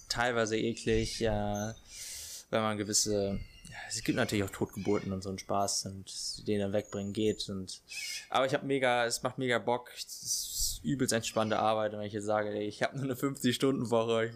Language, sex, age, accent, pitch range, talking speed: German, male, 20-39, German, 105-130 Hz, 190 wpm